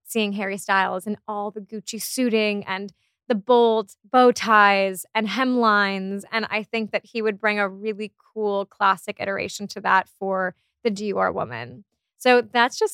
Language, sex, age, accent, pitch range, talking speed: English, female, 20-39, American, 195-235 Hz, 165 wpm